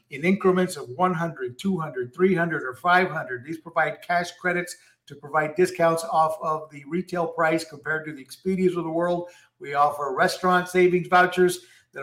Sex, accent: male, American